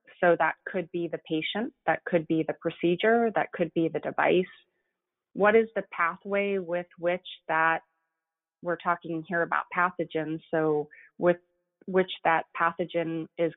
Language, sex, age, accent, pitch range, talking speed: English, female, 30-49, American, 160-185 Hz, 150 wpm